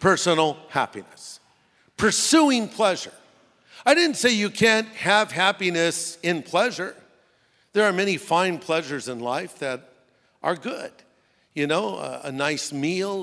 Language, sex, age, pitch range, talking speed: English, male, 50-69, 155-200 Hz, 130 wpm